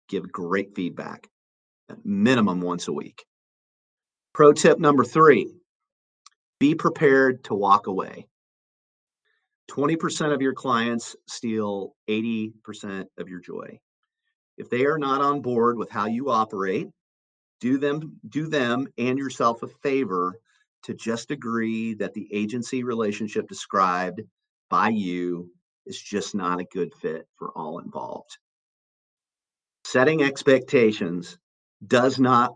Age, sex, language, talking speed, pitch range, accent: 40-59, male, English, 120 wpm, 95-130 Hz, American